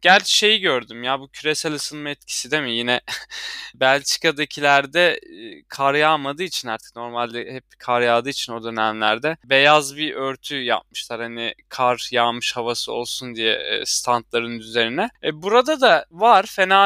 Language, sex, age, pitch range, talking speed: Turkish, male, 20-39, 130-165 Hz, 140 wpm